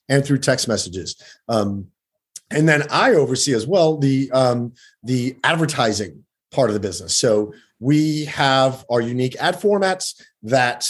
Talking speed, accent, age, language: 150 wpm, American, 30-49, English